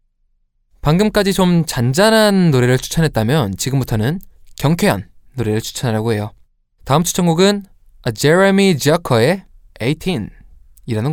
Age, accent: 20-39, native